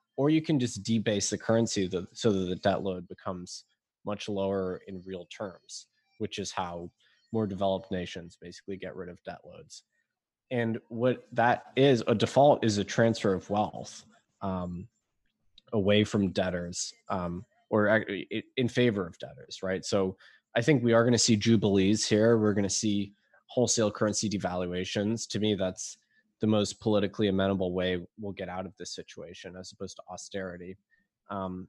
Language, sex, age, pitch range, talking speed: English, male, 20-39, 95-110 Hz, 165 wpm